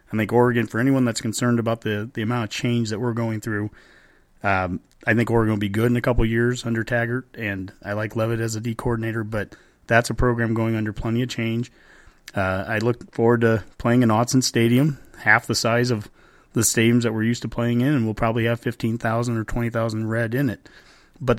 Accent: American